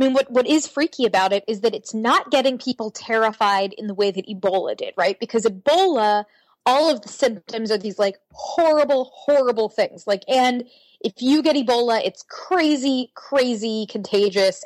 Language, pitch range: English, 205-280 Hz